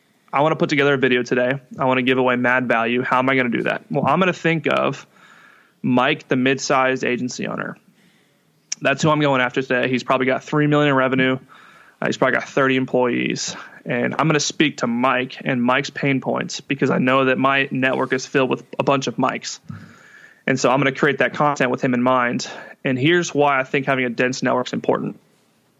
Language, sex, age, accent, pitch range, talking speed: English, male, 20-39, American, 130-150 Hz, 230 wpm